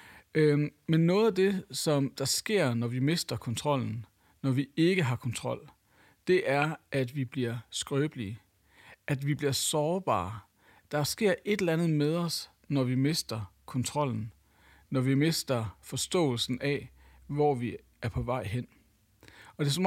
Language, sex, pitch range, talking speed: English, male, 115-160 Hz, 155 wpm